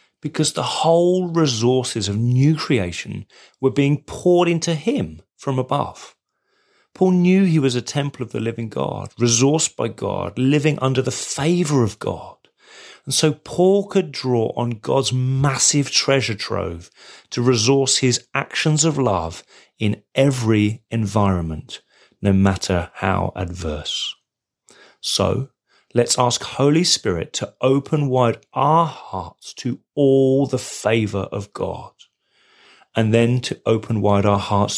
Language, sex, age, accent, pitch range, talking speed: English, male, 30-49, British, 105-145 Hz, 135 wpm